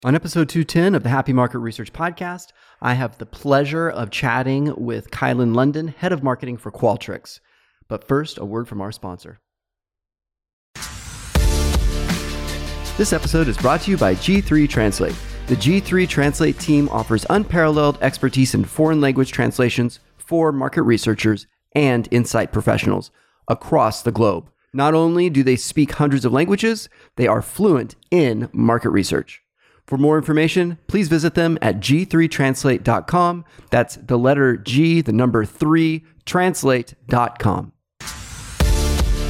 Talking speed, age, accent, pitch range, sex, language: 135 wpm, 30-49, American, 110-155 Hz, male, English